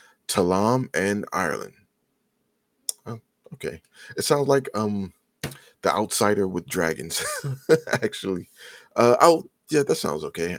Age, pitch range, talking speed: 30-49, 95-125 Hz, 115 wpm